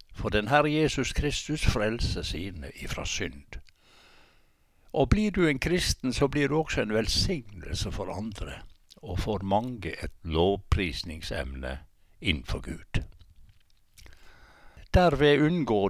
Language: English